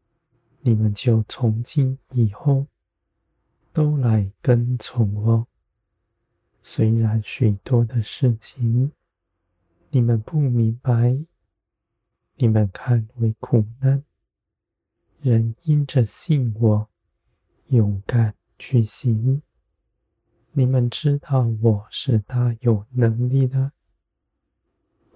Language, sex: Chinese, male